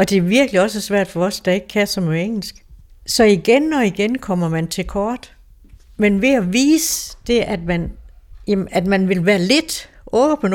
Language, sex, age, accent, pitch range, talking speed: Danish, female, 60-79, native, 175-225 Hz, 195 wpm